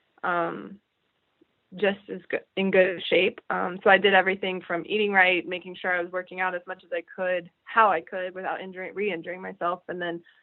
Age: 20-39